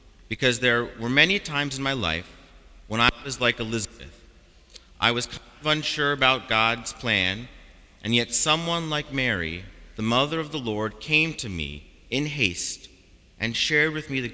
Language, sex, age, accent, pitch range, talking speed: English, male, 40-59, American, 95-135 Hz, 170 wpm